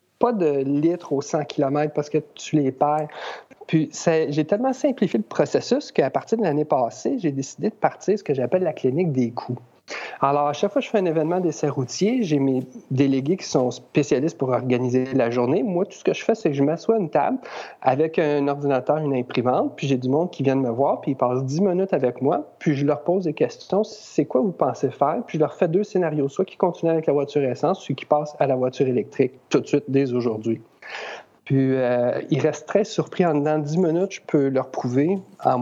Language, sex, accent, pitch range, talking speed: French, male, Canadian, 130-175 Hz, 235 wpm